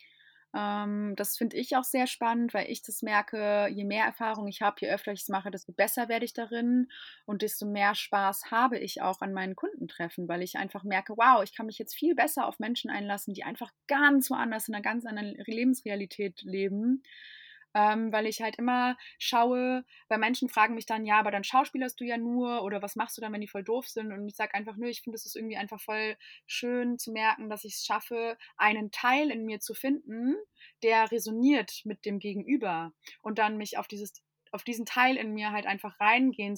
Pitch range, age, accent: 205-235 Hz, 20-39, German